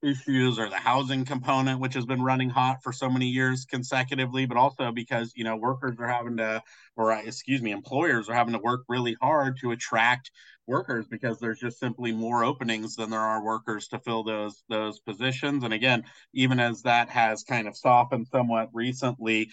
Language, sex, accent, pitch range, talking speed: English, male, American, 110-130 Hz, 195 wpm